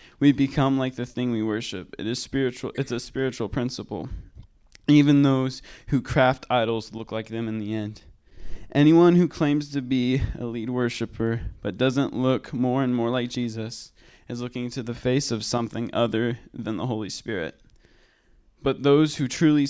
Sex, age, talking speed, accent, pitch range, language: male, 20-39, 170 wpm, American, 115-130 Hz, English